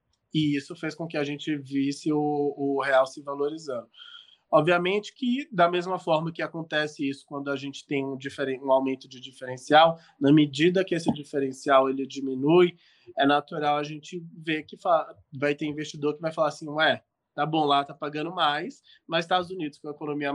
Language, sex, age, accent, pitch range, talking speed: Portuguese, male, 20-39, Brazilian, 140-155 Hz, 190 wpm